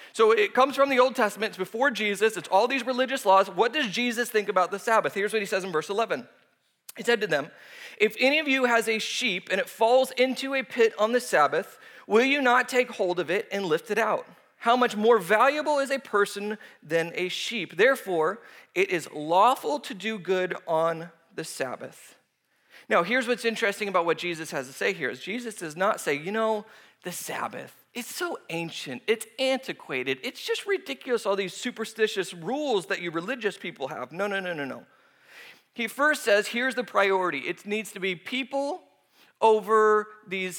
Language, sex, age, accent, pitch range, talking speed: English, male, 30-49, American, 190-250 Hz, 200 wpm